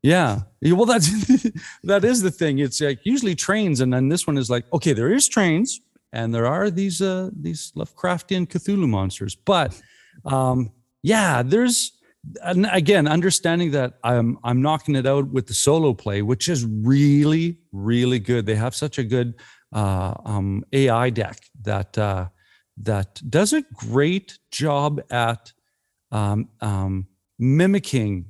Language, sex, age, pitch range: English, male, 40-59, 110-165 Hz